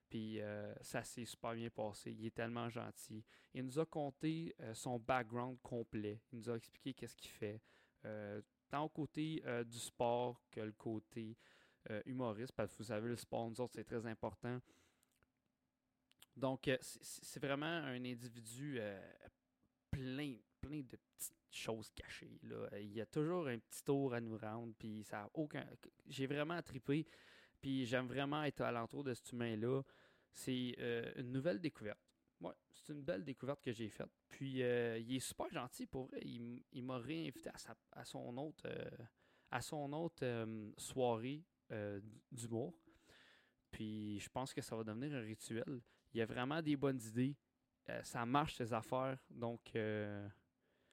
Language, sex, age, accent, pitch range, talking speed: French, male, 20-39, Canadian, 115-135 Hz, 180 wpm